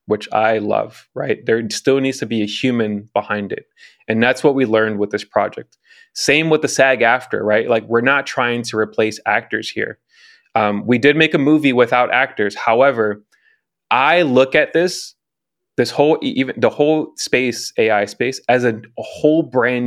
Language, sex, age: English, male, 20-39